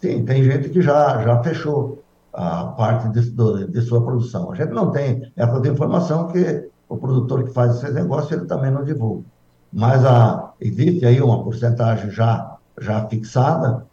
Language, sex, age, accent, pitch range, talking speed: Portuguese, male, 60-79, Brazilian, 115-140 Hz, 170 wpm